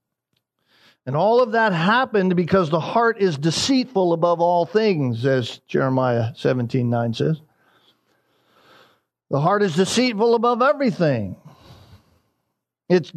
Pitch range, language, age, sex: 155-205 Hz, English, 50-69, male